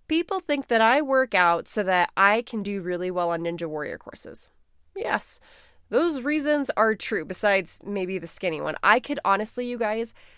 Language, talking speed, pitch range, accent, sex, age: English, 185 wpm, 180-240 Hz, American, female, 20-39